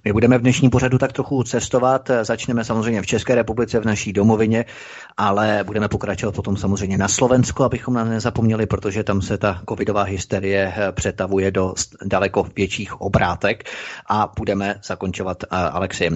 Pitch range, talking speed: 100-120 Hz, 150 wpm